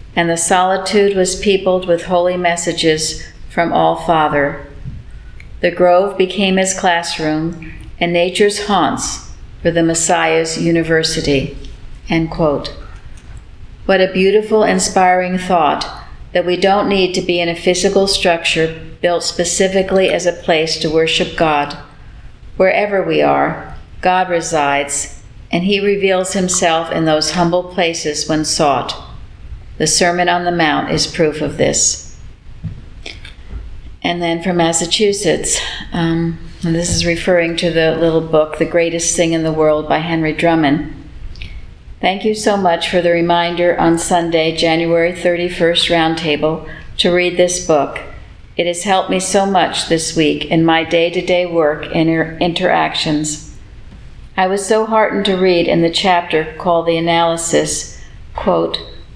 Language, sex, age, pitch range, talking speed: English, female, 60-79, 155-180 Hz, 140 wpm